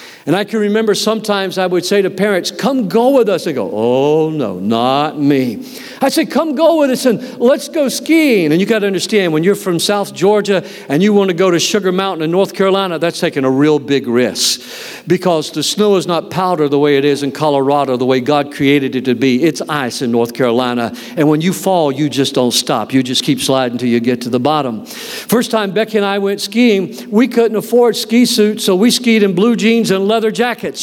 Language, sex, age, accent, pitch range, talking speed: English, male, 50-69, American, 170-230 Hz, 235 wpm